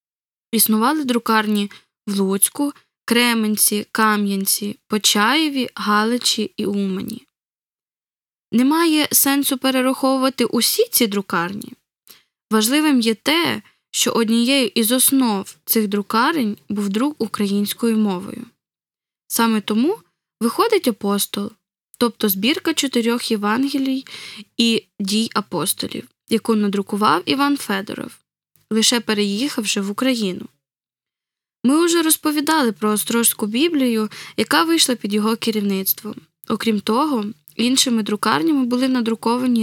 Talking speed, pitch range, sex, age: 100 wpm, 210-265 Hz, female, 10-29